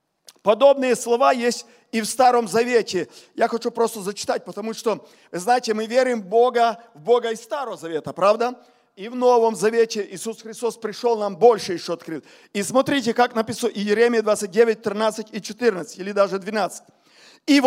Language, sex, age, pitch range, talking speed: Russian, male, 40-59, 210-255 Hz, 165 wpm